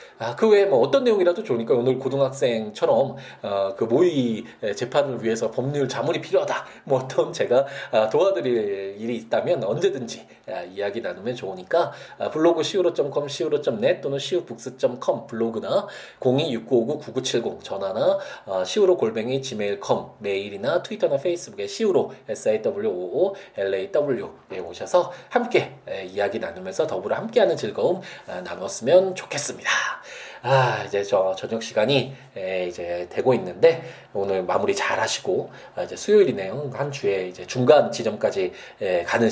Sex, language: male, Korean